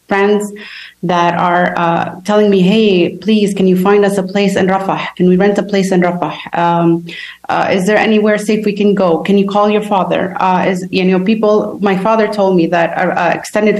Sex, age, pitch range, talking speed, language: female, 30-49, 170-195 Hz, 215 wpm, English